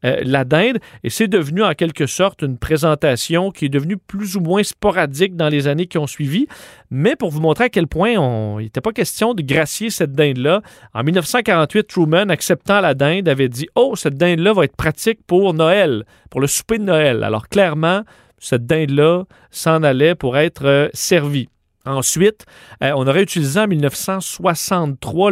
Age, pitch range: 40-59, 140-185 Hz